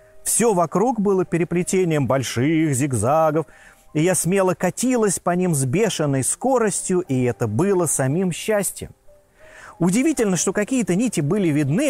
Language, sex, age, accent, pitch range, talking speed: Russian, male, 30-49, native, 130-195 Hz, 130 wpm